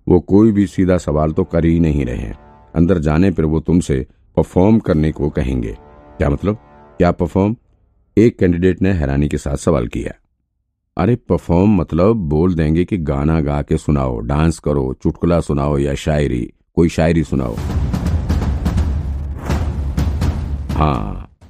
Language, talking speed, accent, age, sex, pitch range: Hindi, 145 wpm, native, 50-69, male, 75-85 Hz